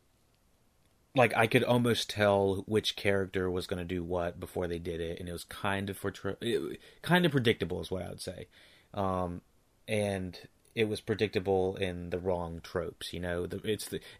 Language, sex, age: English, male, 30-49